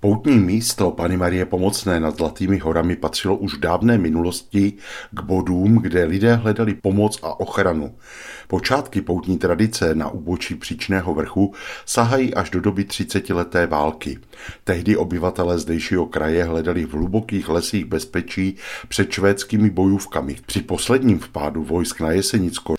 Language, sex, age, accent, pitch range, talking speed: Czech, male, 50-69, native, 85-105 Hz, 135 wpm